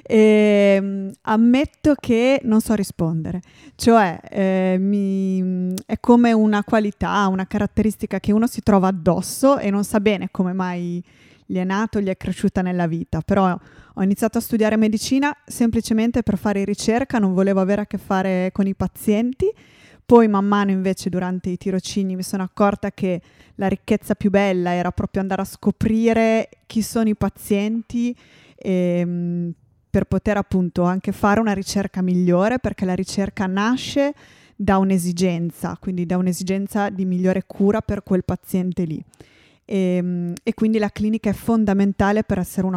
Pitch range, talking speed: 185-220 Hz, 155 wpm